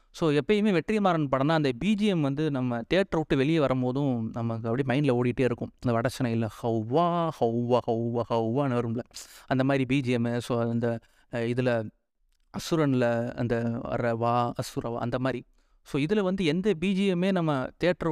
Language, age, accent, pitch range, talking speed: Tamil, 30-49, native, 125-160 Hz, 140 wpm